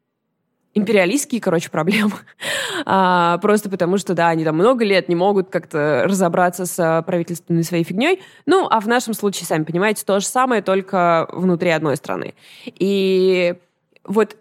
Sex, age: female, 20-39